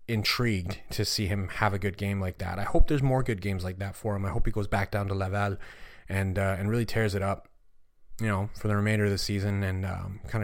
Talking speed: 265 wpm